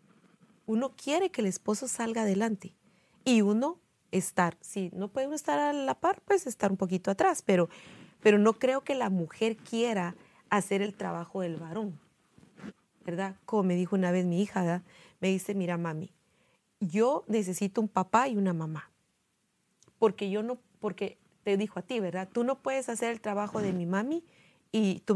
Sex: female